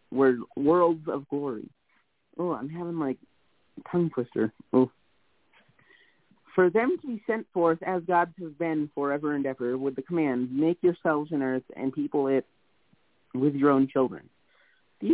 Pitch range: 135-175 Hz